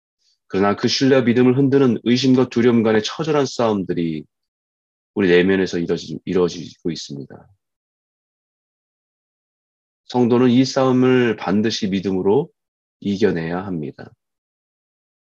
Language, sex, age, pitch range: Korean, male, 20-39, 90-125 Hz